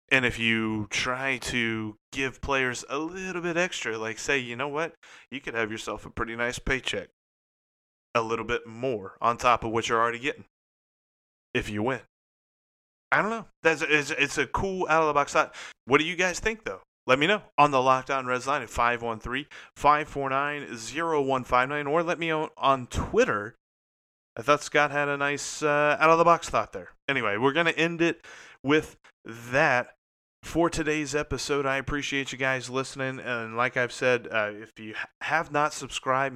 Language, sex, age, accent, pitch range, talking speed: English, male, 30-49, American, 115-145 Hz, 175 wpm